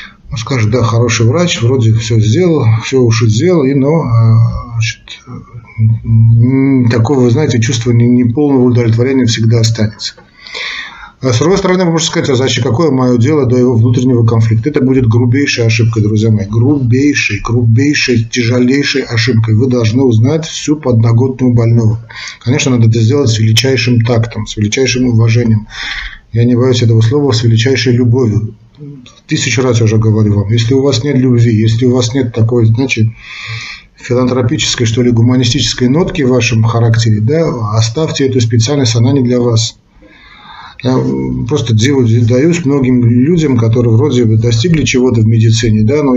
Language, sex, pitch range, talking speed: Russian, male, 115-130 Hz, 150 wpm